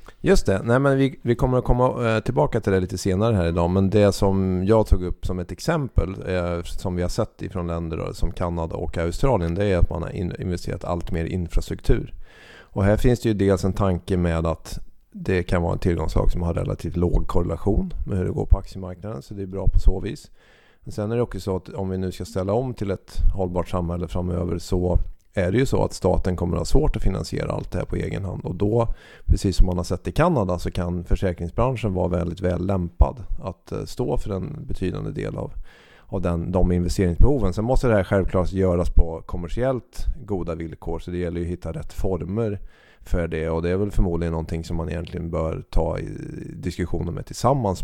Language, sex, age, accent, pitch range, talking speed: Swedish, male, 30-49, native, 85-100 Hz, 220 wpm